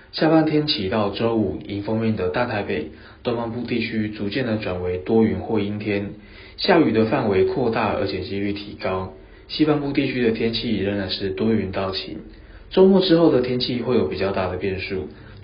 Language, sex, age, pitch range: Chinese, male, 20-39, 95-115 Hz